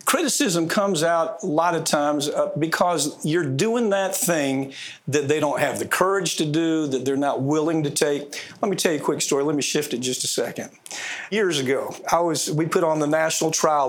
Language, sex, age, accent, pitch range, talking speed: English, male, 50-69, American, 140-180 Hz, 215 wpm